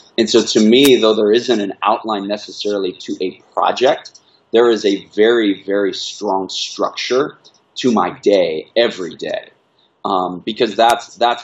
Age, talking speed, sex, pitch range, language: 30-49, 150 wpm, male, 95-115 Hz, English